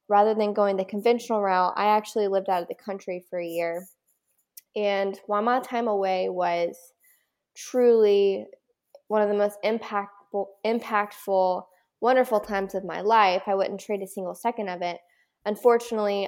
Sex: female